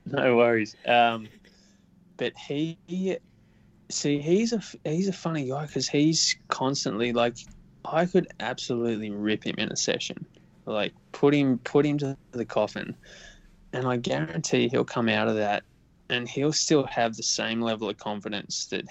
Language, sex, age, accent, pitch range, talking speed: English, male, 20-39, Australian, 105-145 Hz, 160 wpm